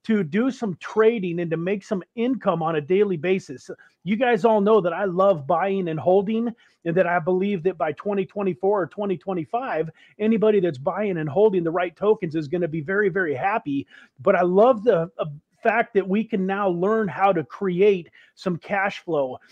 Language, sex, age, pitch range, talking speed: English, male, 40-59, 175-215 Hz, 195 wpm